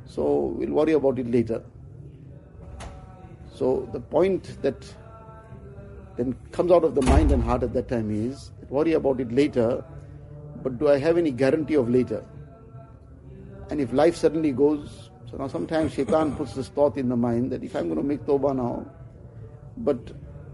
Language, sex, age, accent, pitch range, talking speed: English, male, 60-79, Indian, 125-150 Hz, 170 wpm